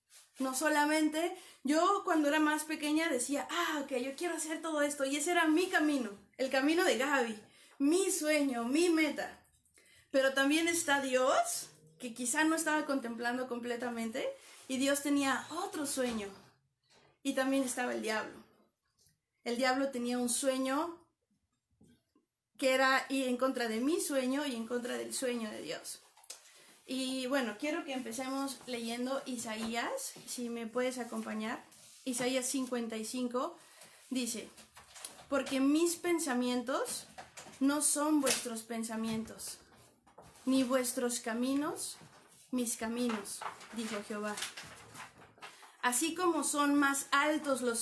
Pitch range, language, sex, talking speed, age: 245-295 Hz, Spanish, female, 130 wpm, 30-49